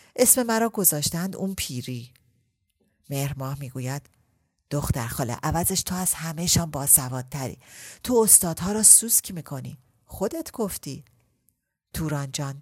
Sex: female